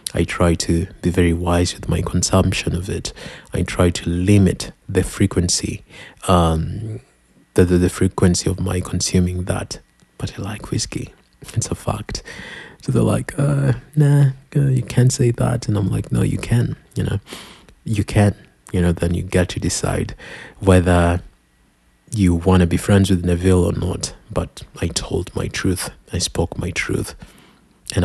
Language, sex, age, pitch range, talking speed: English, male, 30-49, 90-105 Hz, 170 wpm